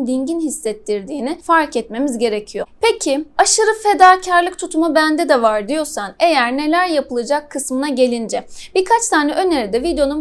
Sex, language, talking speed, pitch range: female, Turkish, 130 wpm, 275-350 Hz